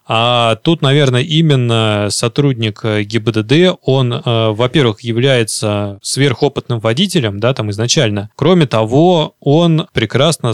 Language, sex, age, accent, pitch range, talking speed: Russian, male, 20-39, native, 115-140 Hz, 110 wpm